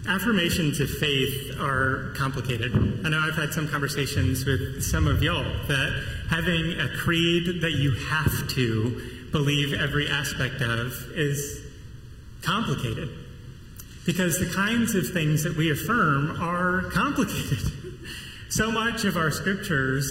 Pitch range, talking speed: 140-195 Hz, 130 wpm